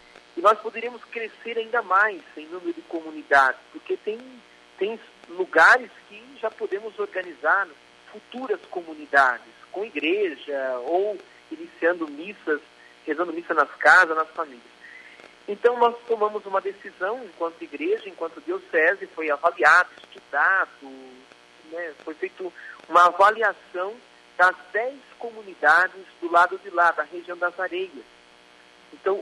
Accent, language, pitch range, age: Brazilian, Portuguese, 135-220 Hz, 40-59